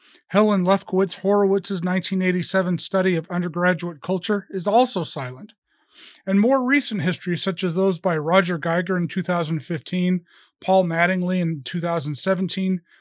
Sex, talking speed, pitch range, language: male, 125 wpm, 175-205 Hz, English